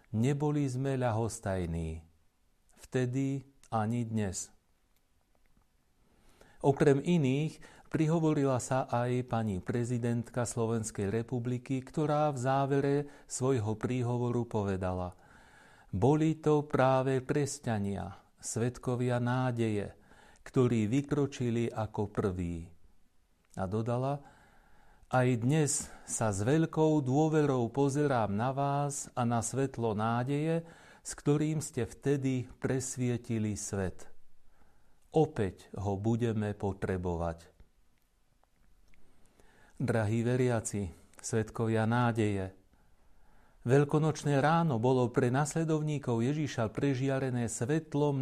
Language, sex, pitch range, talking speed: Slovak, male, 105-140 Hz, 85 wpm